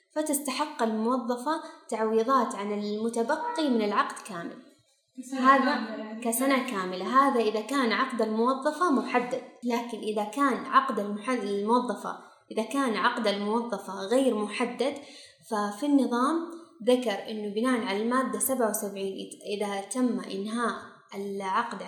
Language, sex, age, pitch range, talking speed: Arabic, female, 20-39, 215-265 Hz, 110 wpm